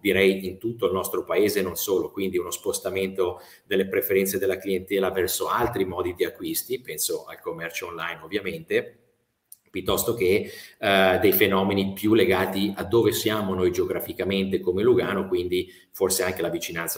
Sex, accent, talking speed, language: male, native, 155 wpm, Italian